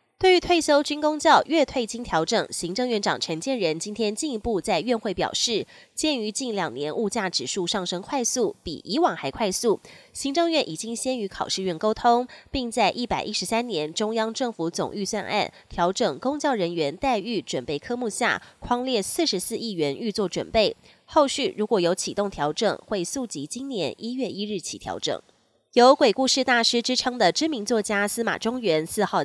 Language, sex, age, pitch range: Chinese, female, 20-39, 190-255 Hz